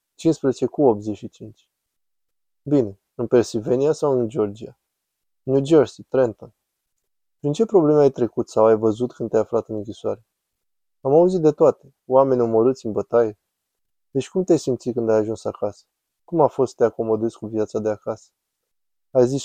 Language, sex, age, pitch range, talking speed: Romanian, male, 20-39, 110-135 Hz, 165 wpm